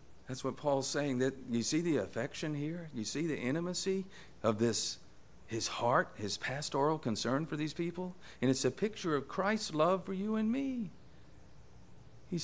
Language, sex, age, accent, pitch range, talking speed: English, male, 50-69, American, 115-160 Hz, 170 wpm